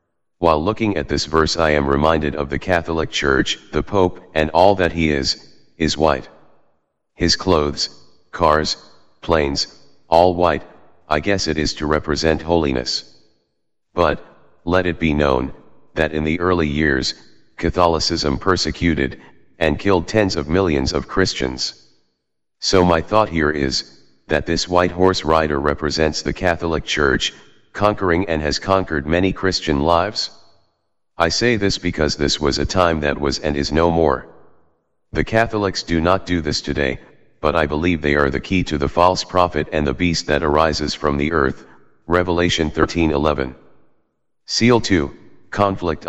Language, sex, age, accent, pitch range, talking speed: English, male, 40-59, American, 75-90 Hz, 155 wpm